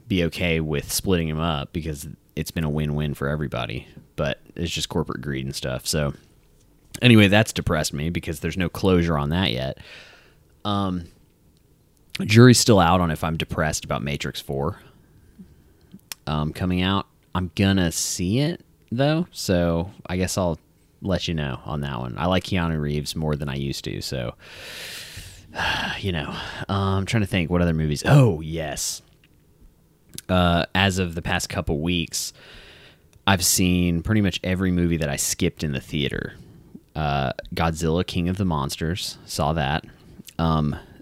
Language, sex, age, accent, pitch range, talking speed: English, male, 30-49, American, 75-100 Hz, 160 wpm